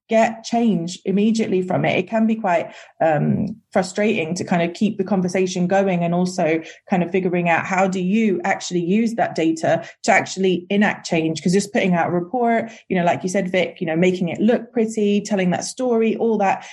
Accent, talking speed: British, 210 wpm